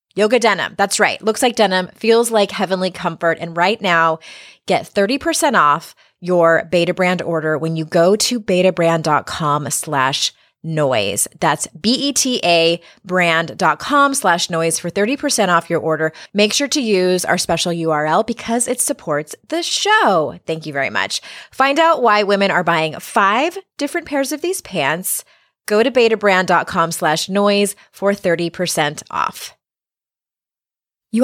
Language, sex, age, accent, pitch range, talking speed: English, female, 20-39, American, 165-225 Hz, 150 wpm